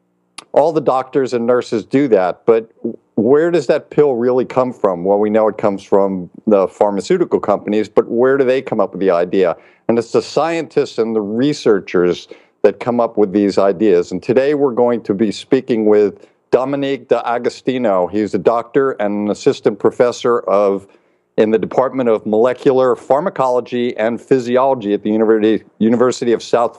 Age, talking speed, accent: 50-69, 175 wpm, American